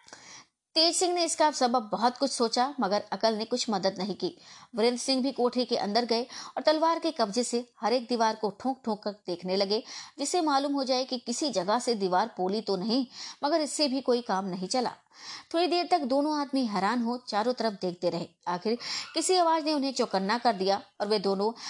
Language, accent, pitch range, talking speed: Hindi, native, 200-275 Hz, 215 wpm